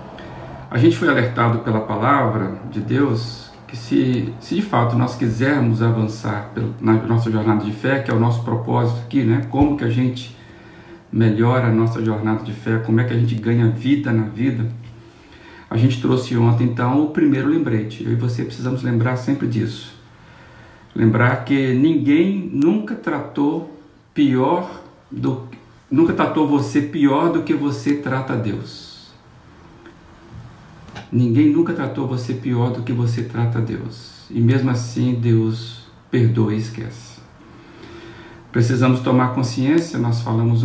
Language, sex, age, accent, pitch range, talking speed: Portuguese, male, 50-69, Brazilian, 115-135 Hz, 150 wpm